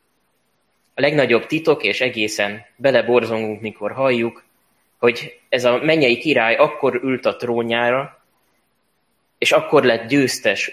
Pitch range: 105-125 Hz